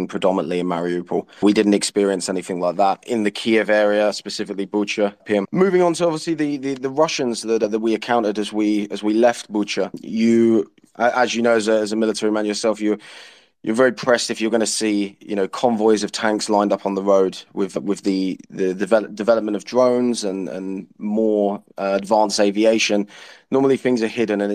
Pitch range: 100-120 Hz